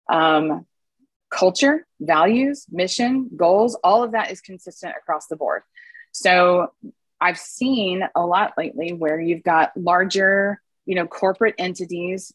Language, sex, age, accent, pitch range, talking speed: English, female, 20-39, American, 170-215 Hz, 130 wpm